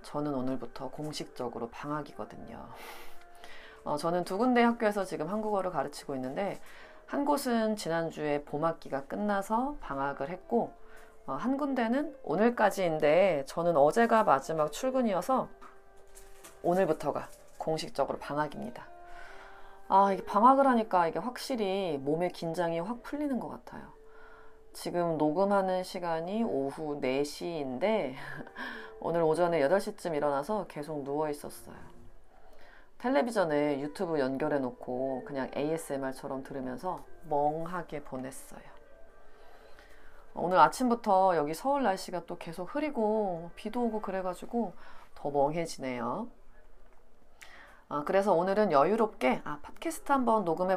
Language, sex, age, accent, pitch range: Korean, female, 30-49, native, 150-215 Hz